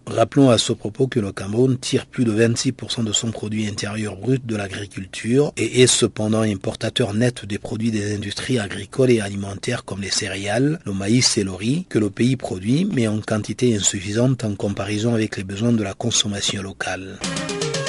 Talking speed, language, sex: 185 wpm, French, male